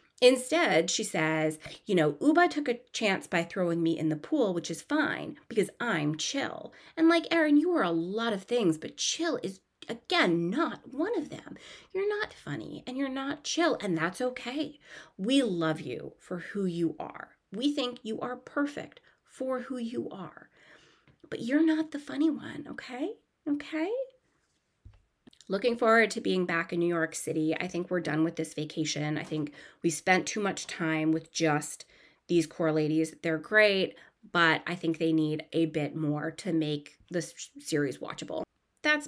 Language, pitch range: English, 165-245 Hz